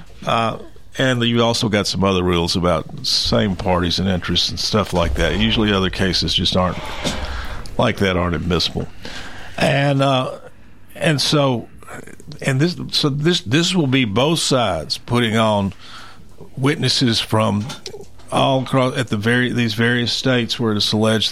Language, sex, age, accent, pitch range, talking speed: English, male, 50-69, American, 95-125 Hz, 155 wpm